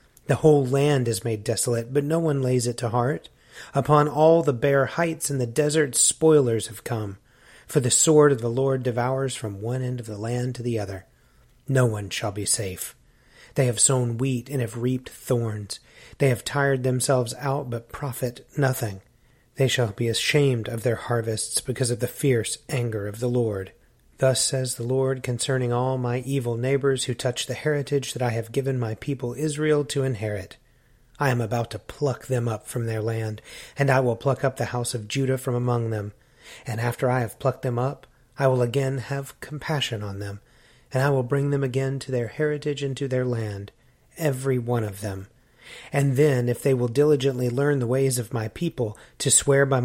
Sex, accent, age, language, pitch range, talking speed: male, American, 30-49, English, 120-140 Hz, 200 wpm